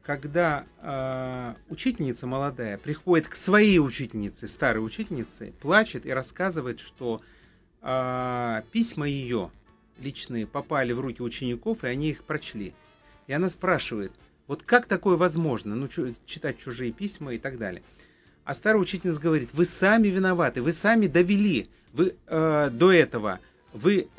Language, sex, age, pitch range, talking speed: Russian, male, 30-49, 135-195 Hz, 140 wpm